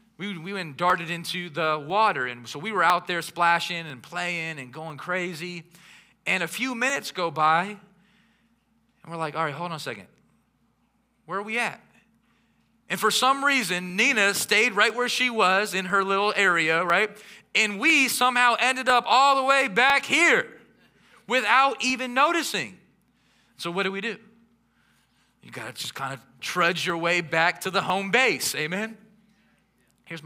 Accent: American